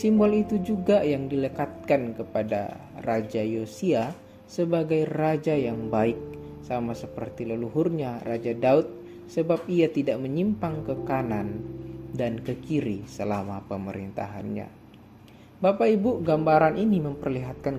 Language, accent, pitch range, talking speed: Indonesian, native, 110-175 Hz, 110 wpm